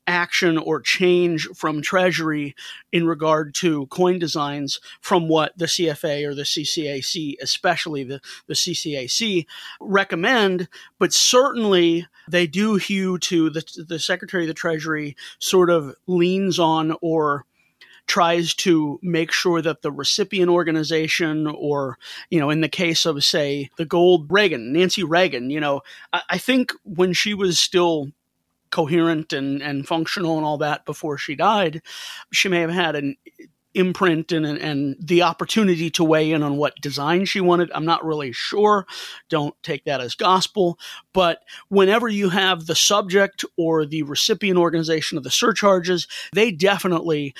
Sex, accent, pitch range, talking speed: male, American, 150-185 Hz, 155 wpm